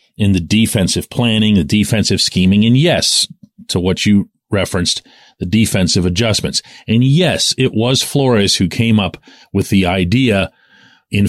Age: 40-59